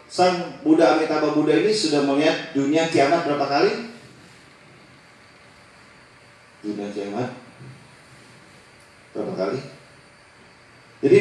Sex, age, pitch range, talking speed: male, 40-59, 125-160 Hz, 85 wpm